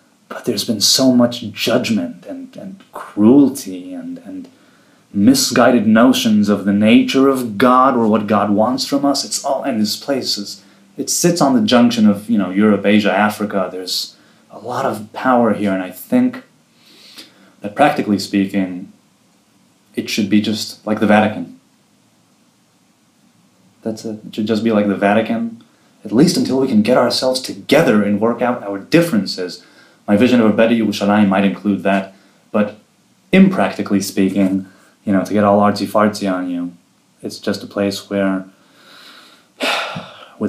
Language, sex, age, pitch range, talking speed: English, male, 30-49, 100-135 Hz, 160 wpm